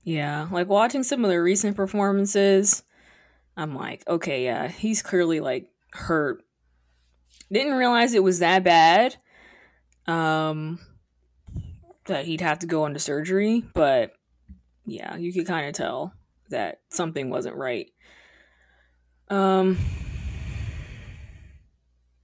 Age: 20-39